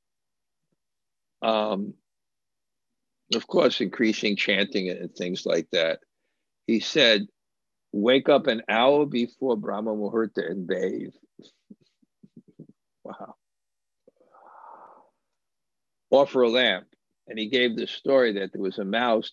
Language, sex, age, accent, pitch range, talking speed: English, male, 50-69, American, 100-120 Hz, 105 wpm